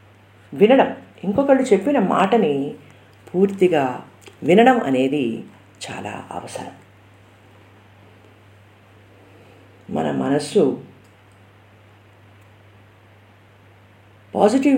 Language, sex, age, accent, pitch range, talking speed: Telugu, female, 50-69, native, 100-155 Hz, 50 wpm